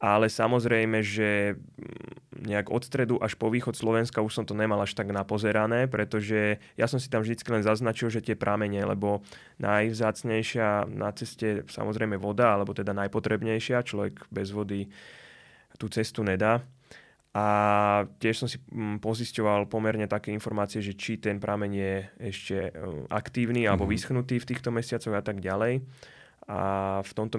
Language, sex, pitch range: Slovak, male, 100-110 Hz